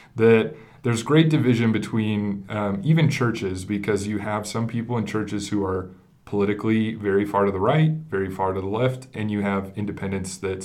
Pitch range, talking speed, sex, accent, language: 100-125 Hz, 185 wpm, male, American, English